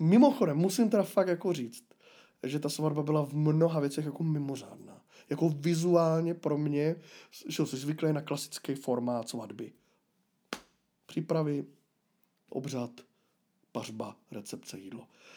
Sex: male